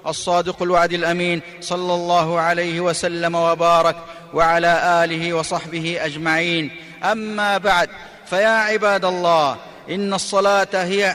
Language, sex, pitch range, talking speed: Arabic, male, 185-225 Hz, 110 wpm